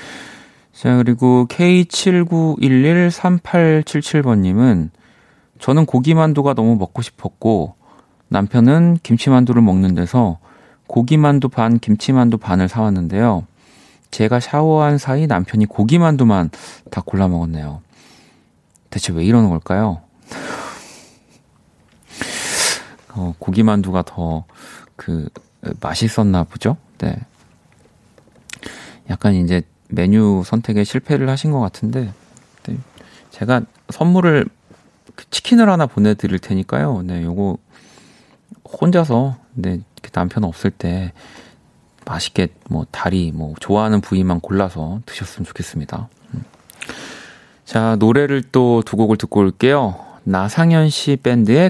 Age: 40-59